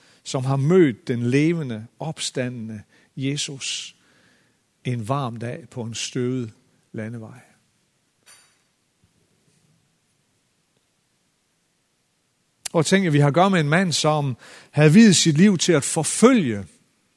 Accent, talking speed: native, 110 wpm